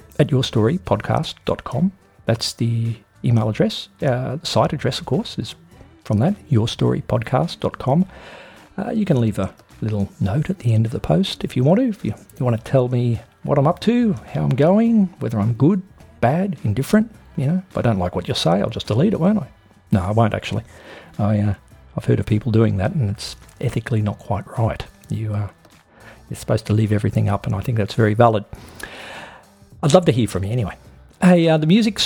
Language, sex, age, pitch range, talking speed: English, male, 50-69, 110-160 Hz, 205 wpm